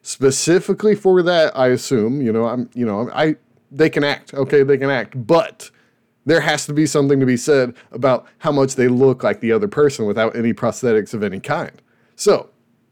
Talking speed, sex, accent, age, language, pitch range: 200 wpm, male, American, 30-49, English, 130-170 Hz